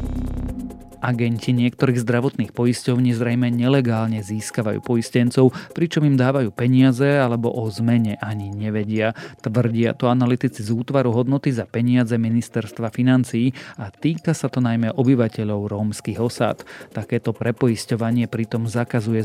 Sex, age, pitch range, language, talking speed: male, 40-59, 110-125 Hz, Slovak, 120 wpm